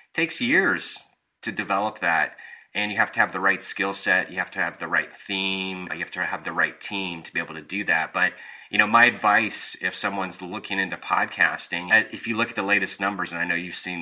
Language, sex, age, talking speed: English, male, 30-49, 240 wpm